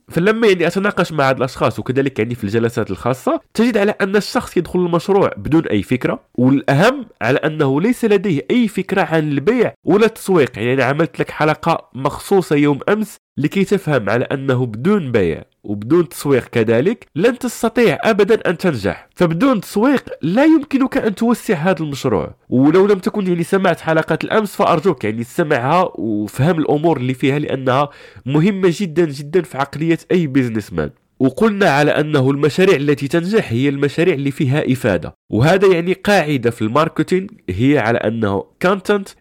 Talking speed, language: 155 wpm, Arabic